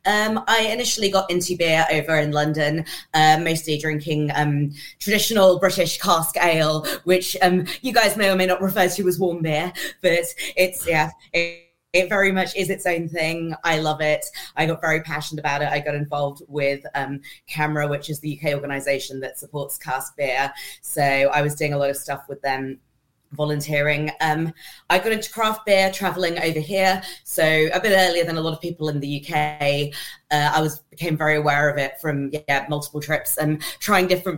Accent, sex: British, female